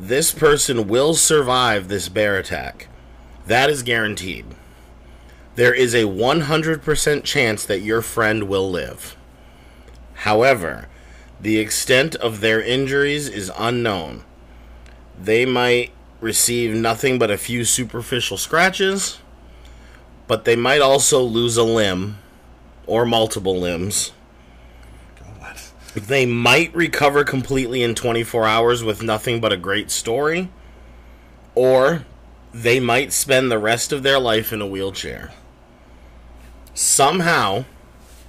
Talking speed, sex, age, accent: 115 wpm, male, 40-59, American